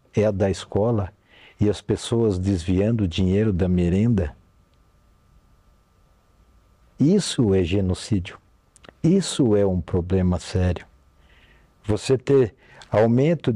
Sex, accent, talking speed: male, Brazilian, 100 wpm